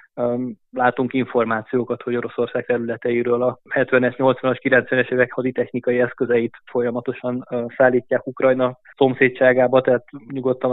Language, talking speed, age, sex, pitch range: Hungarian, 100 wpm, 20-39, male, 120-130 Hz